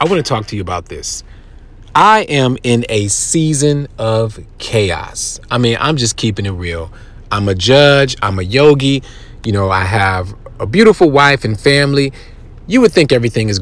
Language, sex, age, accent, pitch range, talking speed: English, male, 40-59, American, 110-150 Hz, 185 wpm